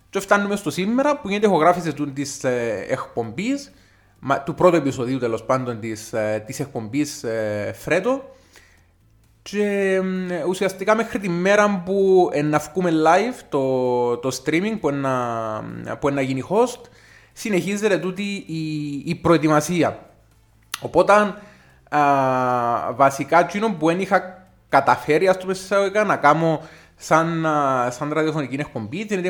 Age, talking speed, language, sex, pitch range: 20-39, 125 wpm, Greek, male, 135-190 Hz